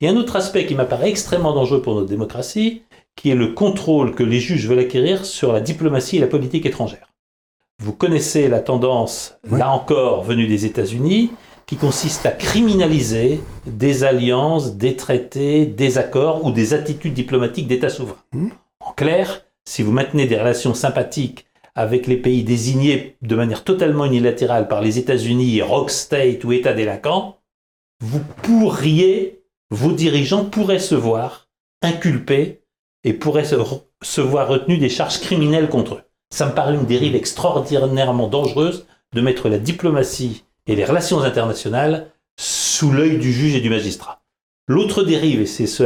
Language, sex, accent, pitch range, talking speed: French, male, French, 120-155 Hz, 160 wpm